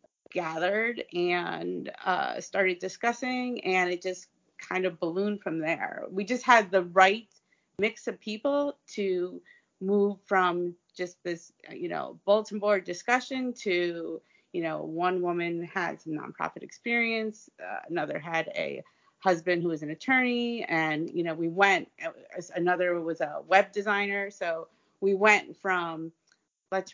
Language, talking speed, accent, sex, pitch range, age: English, 145 wpm, American, female, 170-205 Hz, 30-49